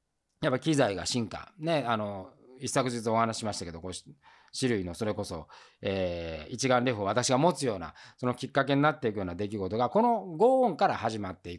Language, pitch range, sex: Japanese, 100-160 Hz, male